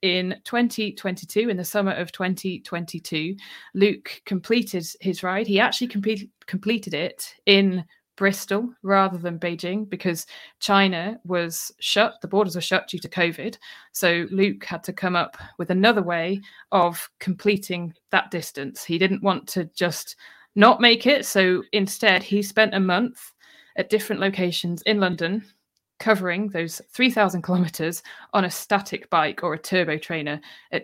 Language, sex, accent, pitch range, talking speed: English, female, British, 170-205 Hz, 150 wpm